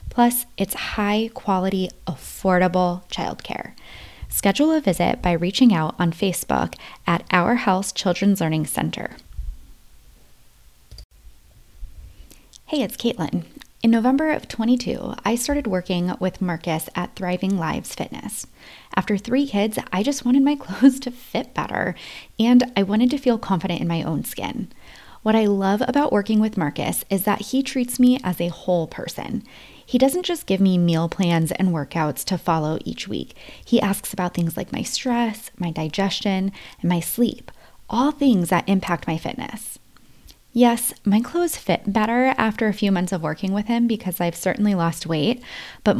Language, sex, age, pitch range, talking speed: English, female, 20-39, 170-235 Hz, 160 wpm